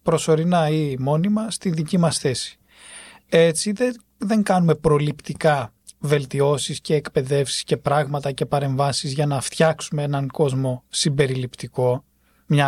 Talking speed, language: 120 wpm, Greek